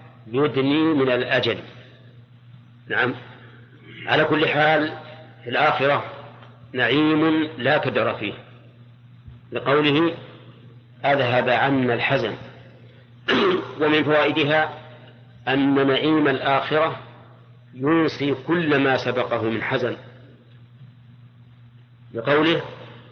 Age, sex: 50-69, male